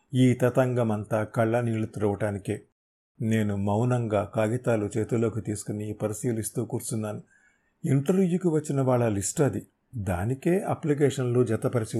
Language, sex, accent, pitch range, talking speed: Telugu, male, native, 115-155 Hz, 105 wpm